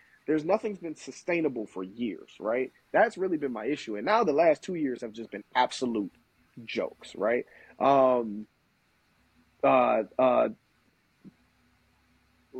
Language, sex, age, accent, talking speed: English, male, 30-49, American, 130 wpm